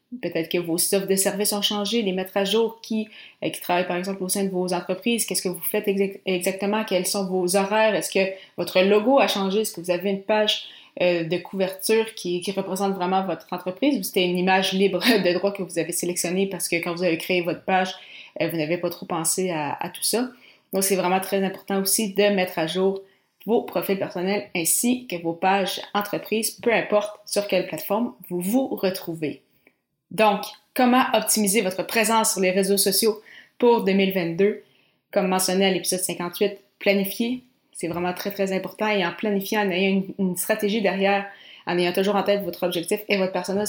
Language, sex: French, female